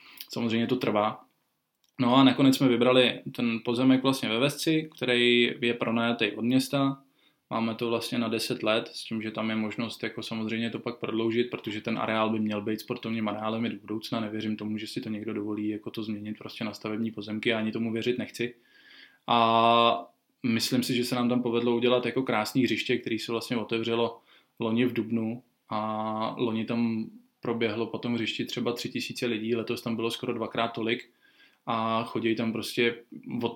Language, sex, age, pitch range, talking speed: Czech, male, 20-39, 110-120 Hz, 185 wpm